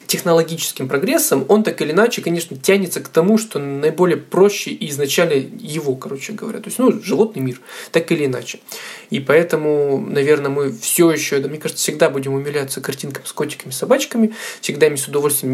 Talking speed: 180 wpm